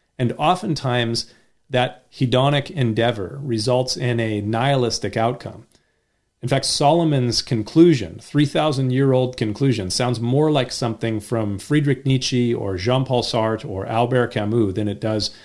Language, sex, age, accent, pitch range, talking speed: English, male, 40-59, American, 110-135 Hz, 125 wpm